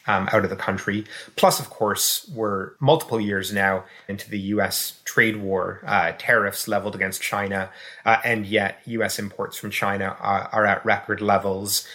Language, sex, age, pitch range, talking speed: English, male, 30-49, 95-110 Hz, 170 wpm